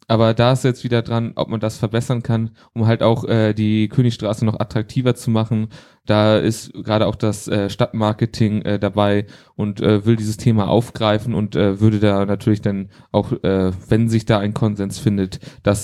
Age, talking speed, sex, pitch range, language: 20-39, 195 wpm, male, 100-115 Hz, German